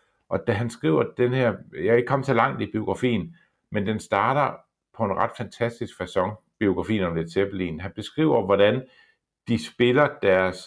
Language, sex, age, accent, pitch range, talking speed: Danish, male, 50-69, native, 95-120 Hz, 180 wpm